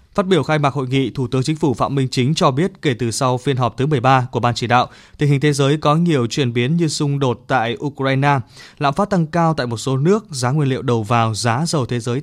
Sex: male